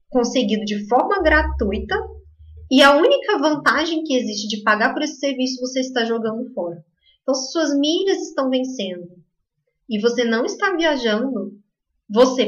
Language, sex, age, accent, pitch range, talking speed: Portuguese, female, 20-39, Brazilian, 215-300 Hz, 150 wpm